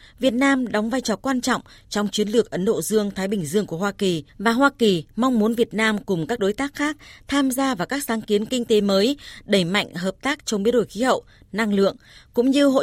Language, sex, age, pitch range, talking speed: Vietnamese, female, 20-39, 190-245 Hz, 250 wpm